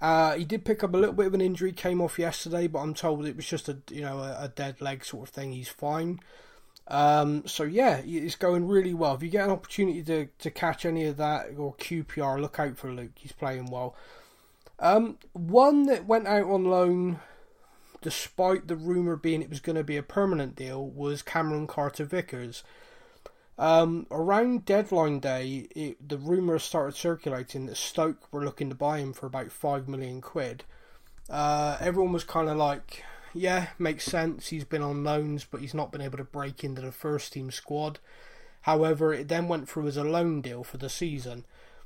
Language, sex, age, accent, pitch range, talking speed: English, male, 20-39, British, 140-175 Hz, 200 wpm